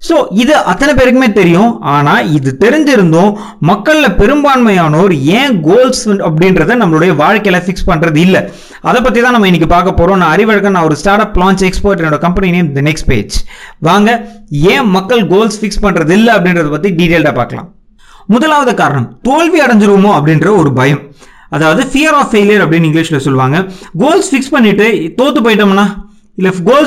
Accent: native